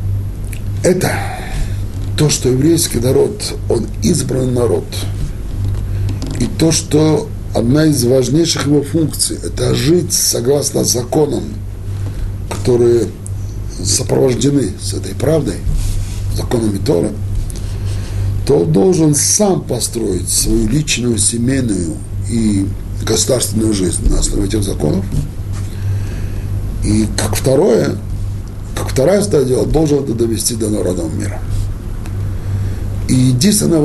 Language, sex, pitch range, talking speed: Russian, male, 100-125 Hz, 100 wpm